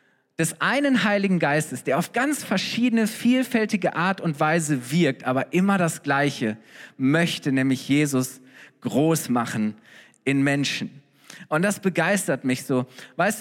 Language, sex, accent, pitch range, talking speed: German, male, German, 145-200 Hz, 135 wpm